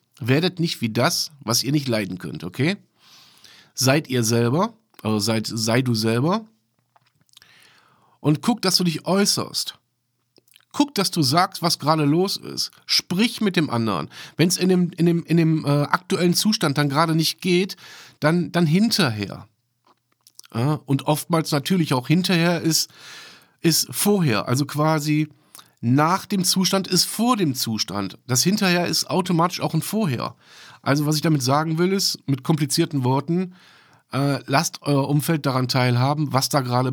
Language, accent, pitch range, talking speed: German, German, 125-170 Hz, 155 wpm